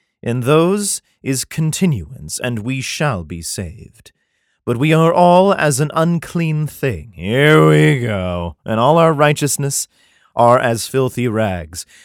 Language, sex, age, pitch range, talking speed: English, male, 30-49, 105-145 Hz, 140 wpm